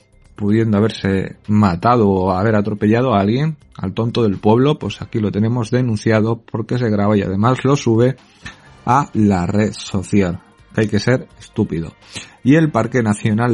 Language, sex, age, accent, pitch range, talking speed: Spanish, male, 30-49, Spanish, 105-130 Hz, 165 wpm